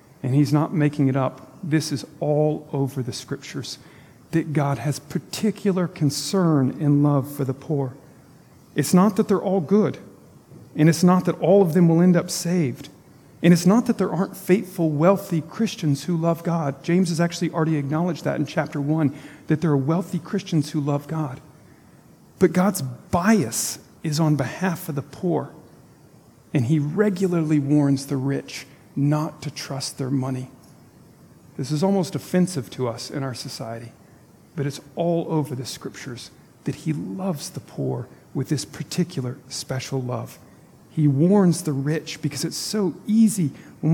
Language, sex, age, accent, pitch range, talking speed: English, male, 40-59, American, 140-170 Hz, 165 wpm